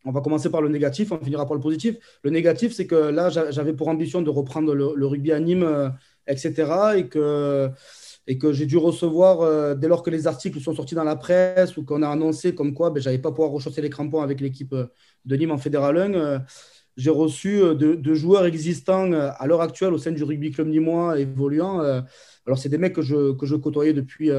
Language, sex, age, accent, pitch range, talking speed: French, male, 20-39, French, 140-170 Hz, 220 wpm